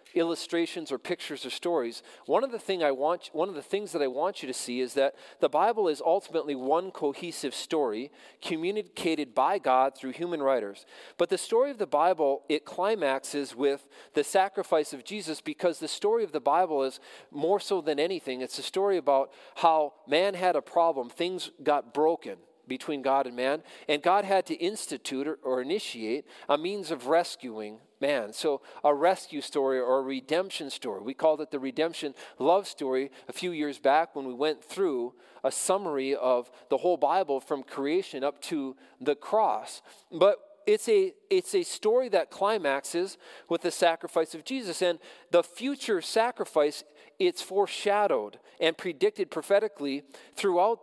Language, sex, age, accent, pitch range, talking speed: English, male, 40-59, American, 145-230 Hz, 175 wpm